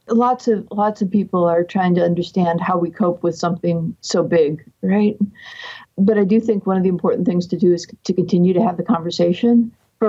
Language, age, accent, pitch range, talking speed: English, 50-69, American, 170-205 Hz, 215 wpm